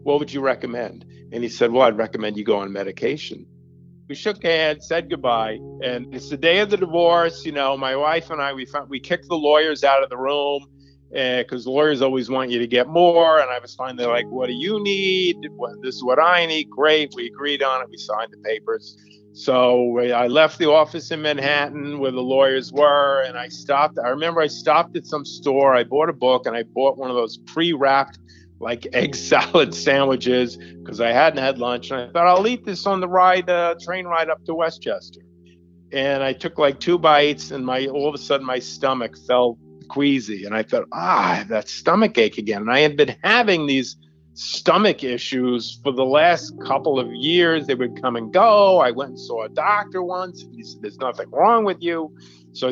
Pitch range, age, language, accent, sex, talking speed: 125-165 Hz, 50-69, English, American, male, 215 wpm